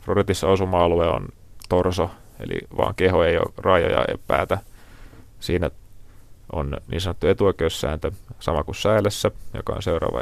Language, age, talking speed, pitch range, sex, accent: Finnish, 30-49, 135 wpm, 90-105 Hz, male, native